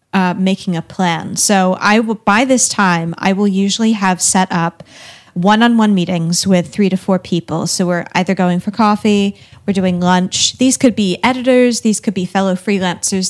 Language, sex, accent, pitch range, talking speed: English, female, American, 180-215 Hz, 185 wpm